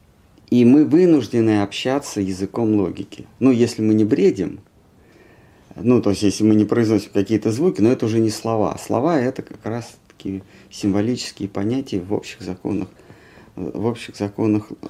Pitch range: 100-125 Hz